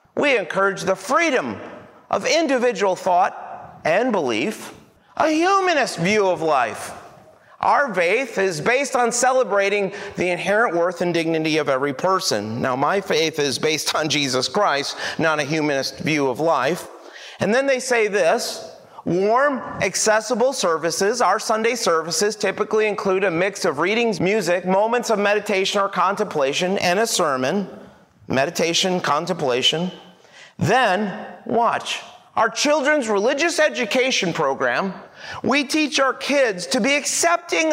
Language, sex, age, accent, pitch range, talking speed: English, male, 40-59, American, 160-240 Hz, 135 wpm